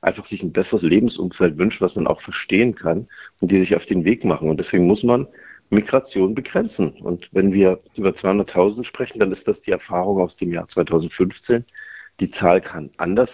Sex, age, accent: male, 50-69, German